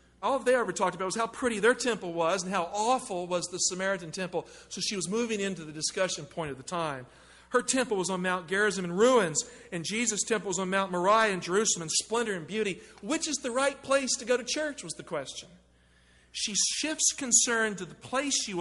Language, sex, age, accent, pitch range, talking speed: English, male, 50-69, American, 160-220 Hz, 225 wpm